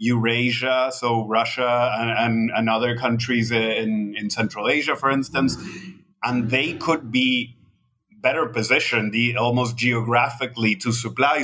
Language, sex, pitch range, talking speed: English, male, 110-130 Hz, 125 wpm